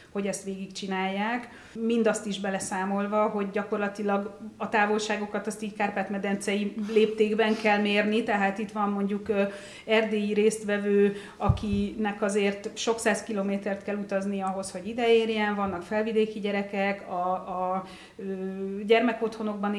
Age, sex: 30-49, female